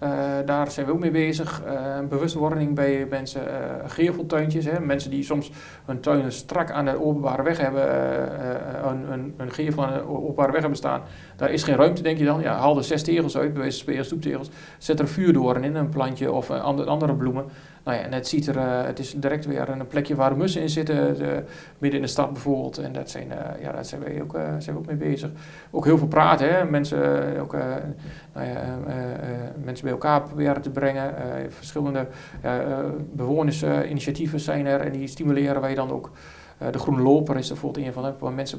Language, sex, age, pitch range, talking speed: Dutch, male, 40-59, 135-155 Hz, 185 wpm